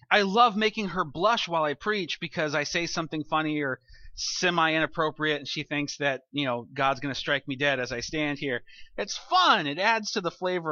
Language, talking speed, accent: English, 215 wpm, American